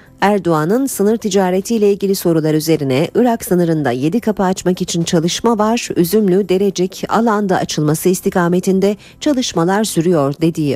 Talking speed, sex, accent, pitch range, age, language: 125 wpm, female, native, 160-210 Hz, 40-59, Turkish